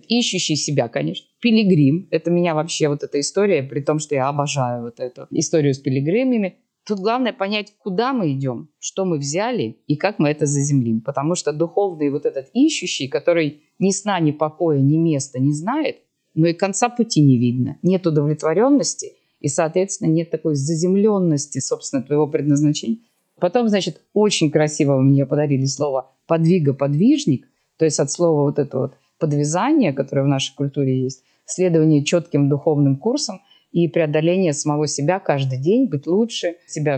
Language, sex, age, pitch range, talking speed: Russian, female, 20-39, 145-195 Hz, 160 wpm